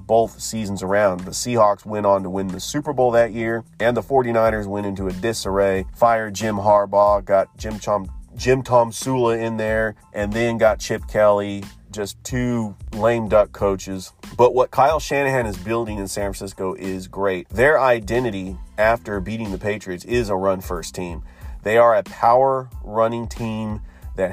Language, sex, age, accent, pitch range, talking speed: English, male, 30-49, American, 95-115 Hz, 175 wpm